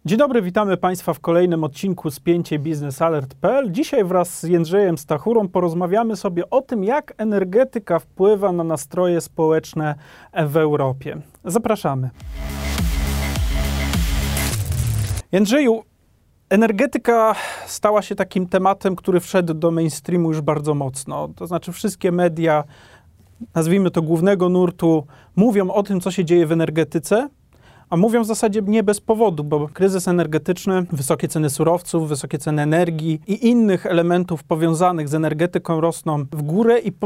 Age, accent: 30-49, native